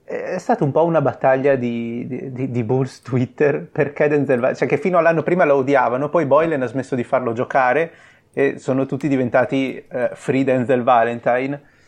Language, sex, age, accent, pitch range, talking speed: Italian, male, 30-49, native, 120-140 Hz, 185 wpm